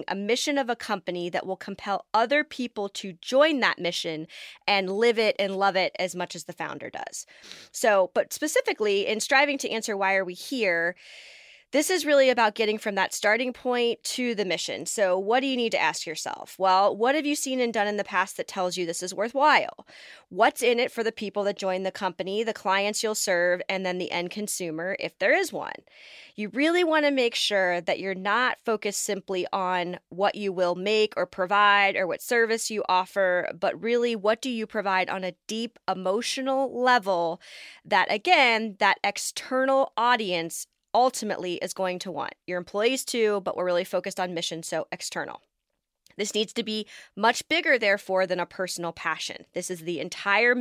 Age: 20-39